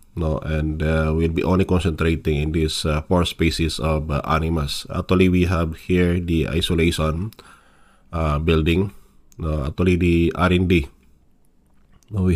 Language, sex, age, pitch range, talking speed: Filipino, male, 20-39, 75-85 Hz, 135 wpm